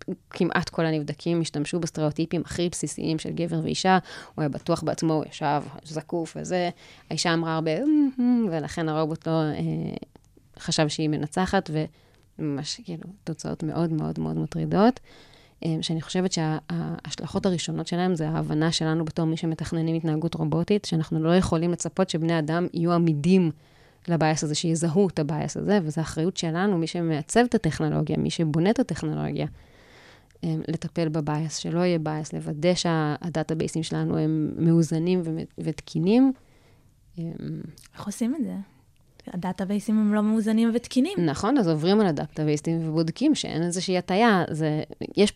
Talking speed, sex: 130 wpm, female